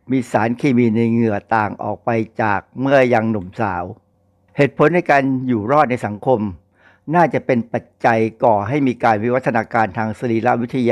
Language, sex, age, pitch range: Thai, male, 60-79, 105-130 Hz